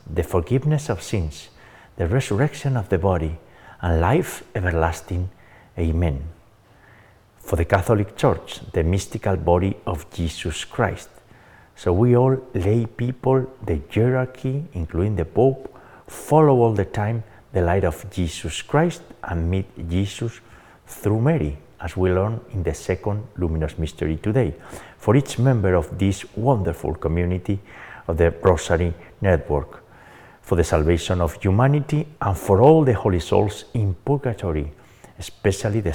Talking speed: 135 wpm